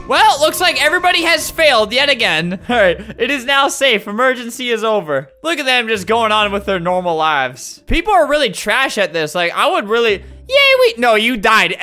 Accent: American